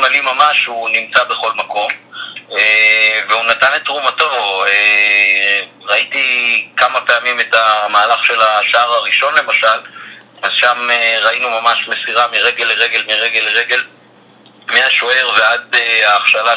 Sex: male